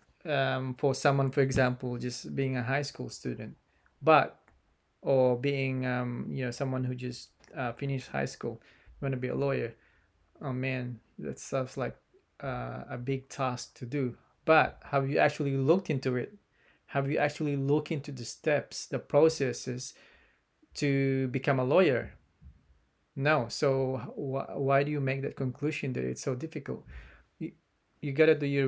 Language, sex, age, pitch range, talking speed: English, male, 20-39, 125-140 Hz, 165 wpm